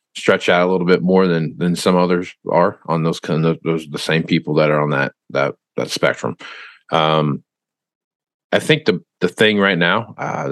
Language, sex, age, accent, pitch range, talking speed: English, male, 50-69, American, 80-90 Hz, 210 wpm